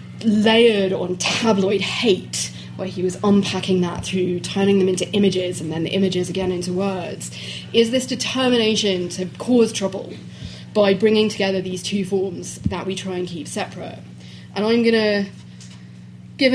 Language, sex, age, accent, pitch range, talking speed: English, female, 30-49, British, 175-205 Hz, 160 wpm